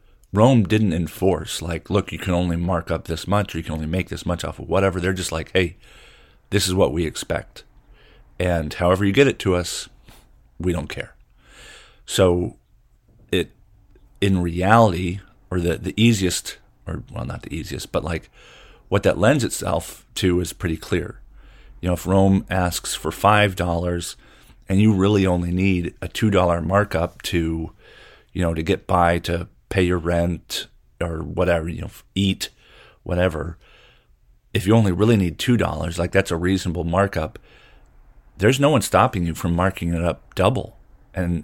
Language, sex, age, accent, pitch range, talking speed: English, male, 40-59, American, 85-100 Hz, 170 wpm